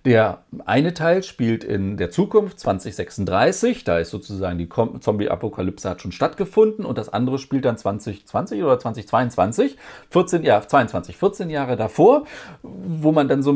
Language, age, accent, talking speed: German, 40-59, German, 145 wpm